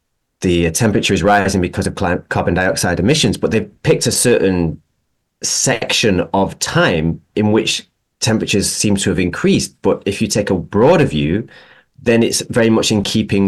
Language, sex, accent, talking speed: English, male, British, 165 wpm